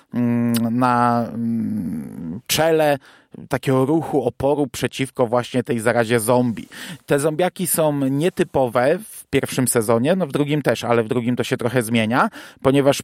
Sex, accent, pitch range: male, native, 120-145 Hz